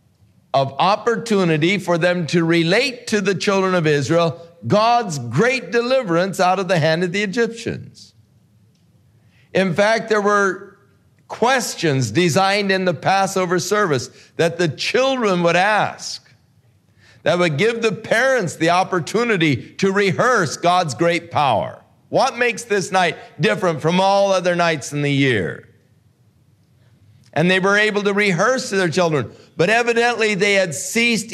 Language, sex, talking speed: English, male, 140 wpm